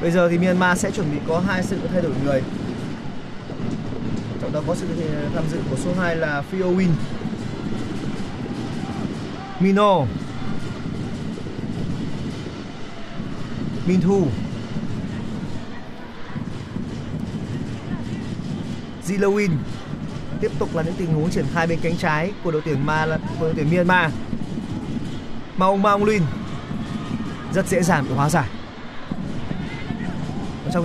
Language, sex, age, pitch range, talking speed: Vietnamese, male, 30-49, 155-190 Hz, 110 wpm